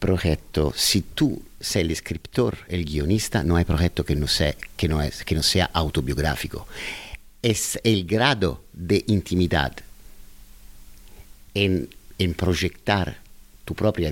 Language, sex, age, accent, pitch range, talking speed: Spanish, male, 50-69, Italian, 85-110 Hz, 130 wpm